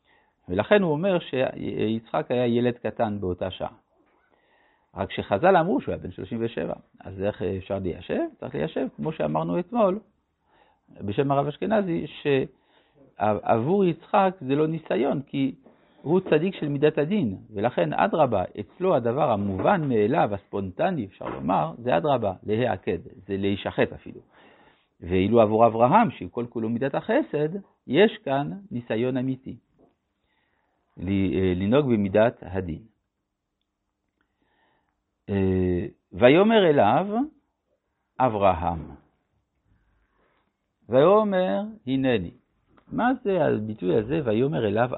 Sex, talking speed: male, 105 wpm